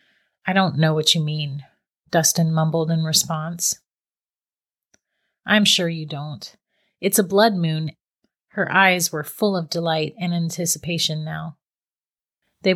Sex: female